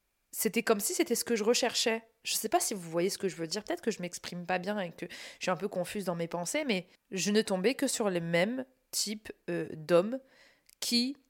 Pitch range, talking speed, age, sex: 180-250 Hz, 260 wpm, 20-39, female